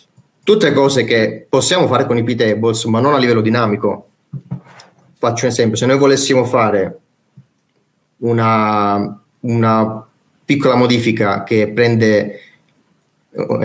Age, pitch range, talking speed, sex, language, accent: 30-49, 105-120 Hz, 125 wpm, male, Italian, native